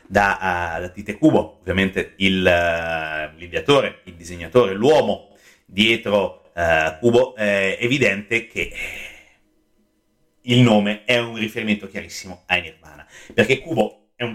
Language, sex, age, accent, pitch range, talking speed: Italian, male, 30-49, native, 100-130 Hz, 125 wpm